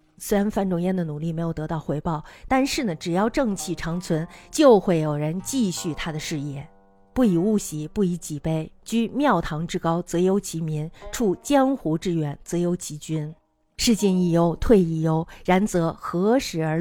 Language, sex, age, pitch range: Chinese, female, 50-69, 160-200 Hz